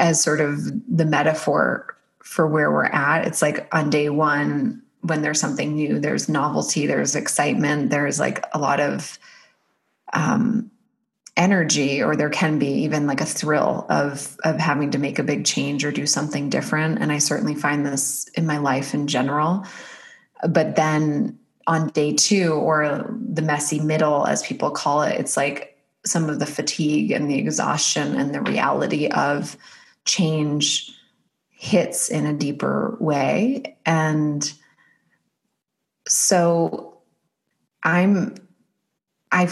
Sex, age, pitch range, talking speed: female, 20-39, 145-170 Hz, 145 wpm